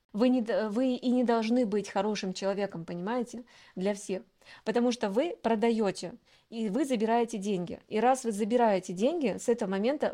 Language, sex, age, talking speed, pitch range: Russian, female, 20-39, 160 wpm, 195-240 Hz